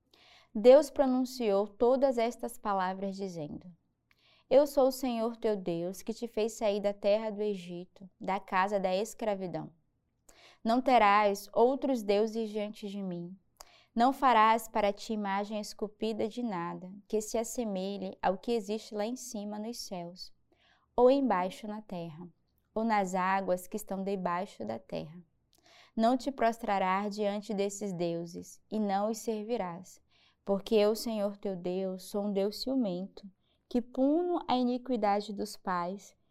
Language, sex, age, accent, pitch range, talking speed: Portuguese, female, 20-39, Brazilian, 195-235 Hz, 145 wpm